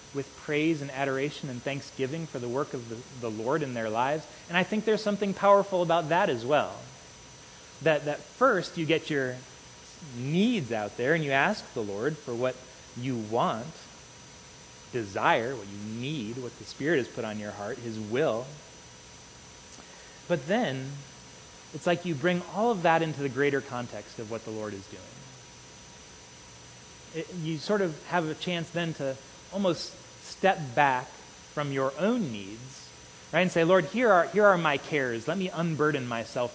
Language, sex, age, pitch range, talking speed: English, male, 30-49, 115-170 Hz, 175 wpm